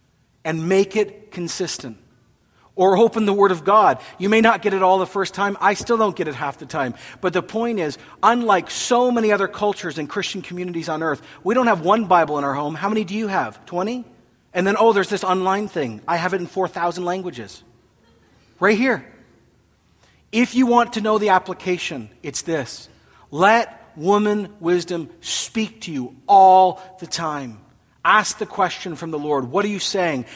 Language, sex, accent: English, male, American